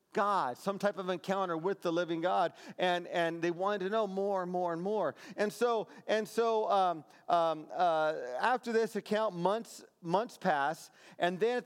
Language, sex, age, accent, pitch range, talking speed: English, male, 40-59, American, 170-225 Hz, 185 wpm